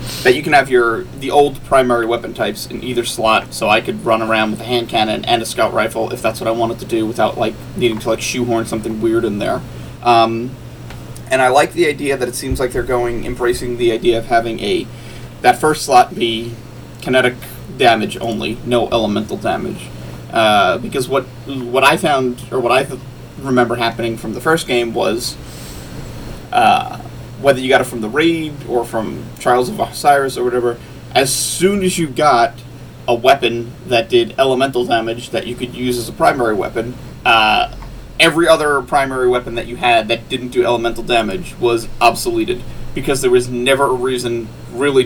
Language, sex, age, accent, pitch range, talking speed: English, male, 30-49, American, 115-135 Hz, 190 wpm